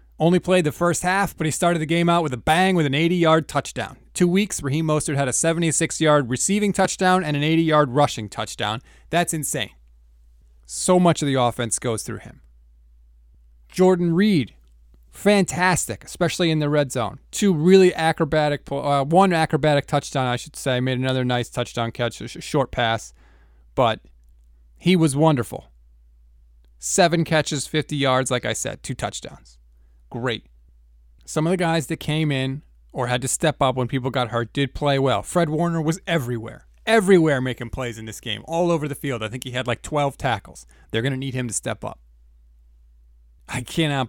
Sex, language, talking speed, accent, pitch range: male, English, 180 wpm, American, 100-155 Hz